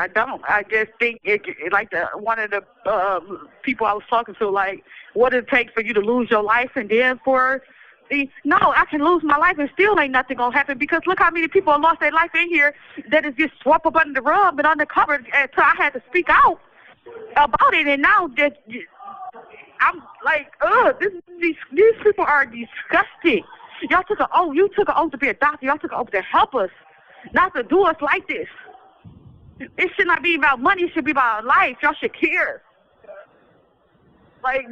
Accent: American